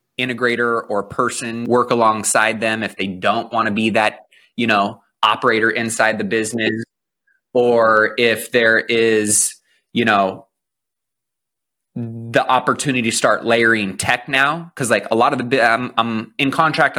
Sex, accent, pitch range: male, American, 110-135 Hz